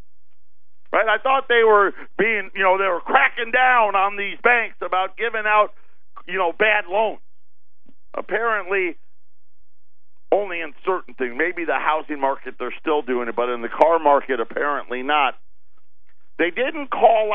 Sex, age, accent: male, 50-69, American